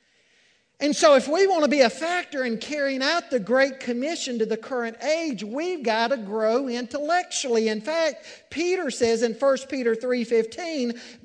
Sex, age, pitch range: male, 50-69, 200-275 Hz